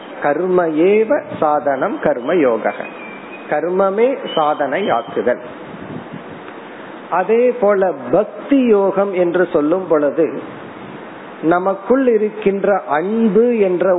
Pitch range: 170-215 Hz